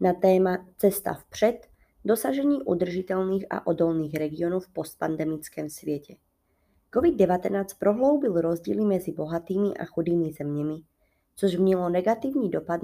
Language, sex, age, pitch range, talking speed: Czech, female, 20-39, 165-210 Hz, 110 wpm